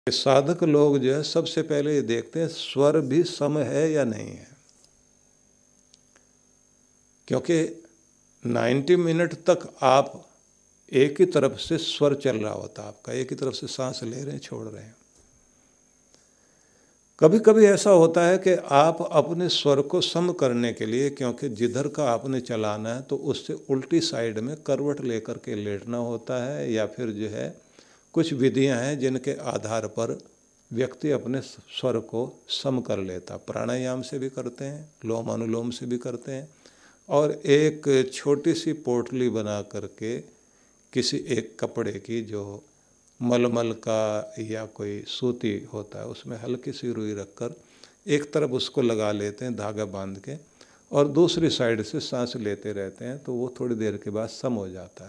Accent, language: native, Hindi